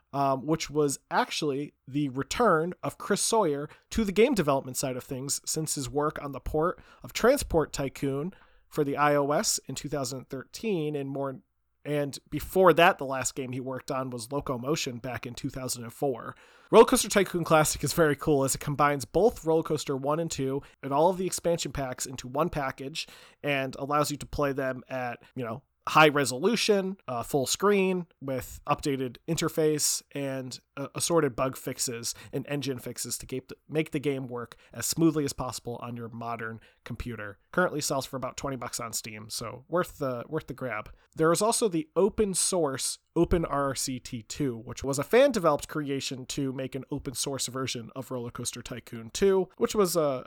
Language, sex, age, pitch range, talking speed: English, male, 30-49, 125-155 Hz, 180 wpm